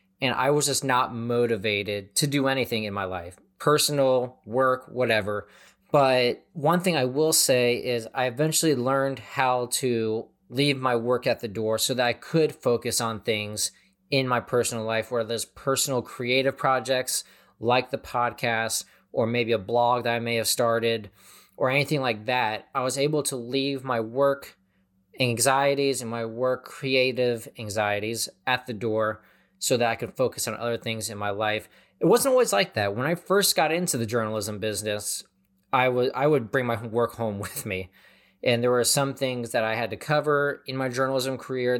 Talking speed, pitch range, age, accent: 185 wpm, 110-135 Hz, 20-39, American